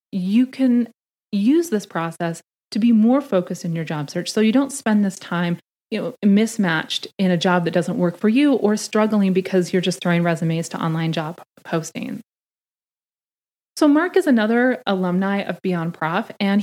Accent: American